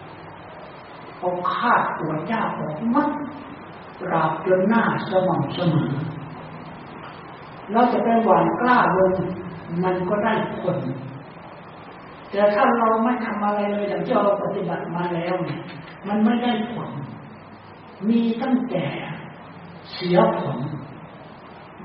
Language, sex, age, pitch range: Thai, male, 60-79, 180-225 Hz